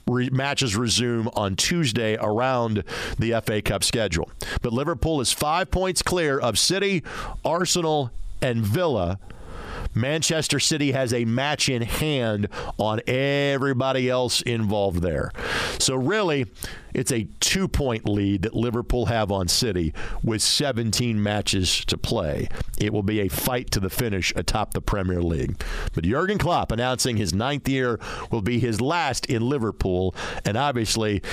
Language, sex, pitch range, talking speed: English, male, 110-150 Hz, 145 wpm